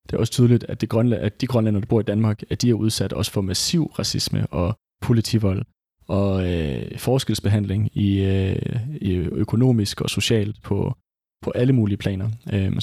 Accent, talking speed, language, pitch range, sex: native, 175 wpm, Danish, 105-120 Hz, male